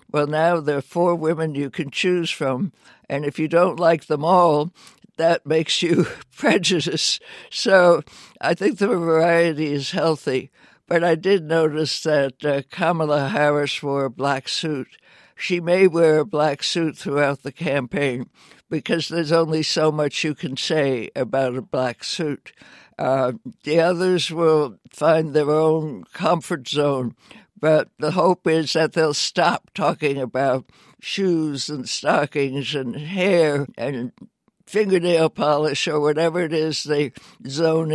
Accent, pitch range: American, 140-170 Hz